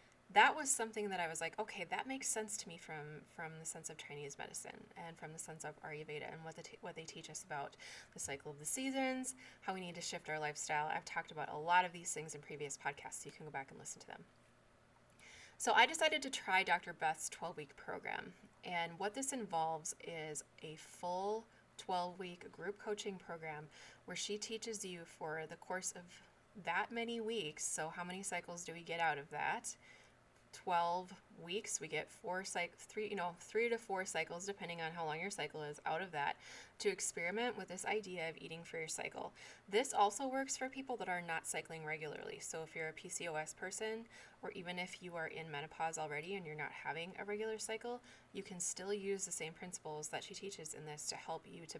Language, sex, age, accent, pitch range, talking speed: English, female, 20-39, American, 160-210 Hz, 220 wpm